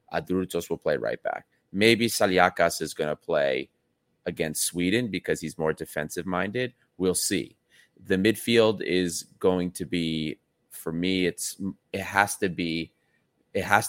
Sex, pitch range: male, 85-105 Hz